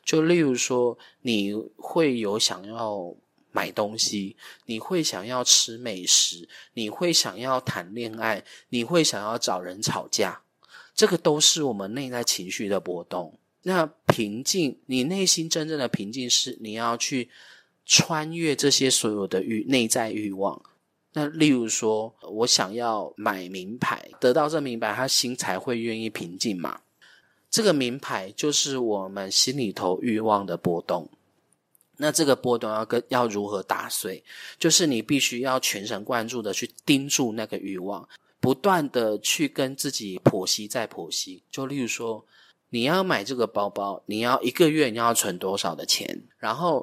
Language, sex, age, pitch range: Chinese, male, 30-49, 110-140 Hz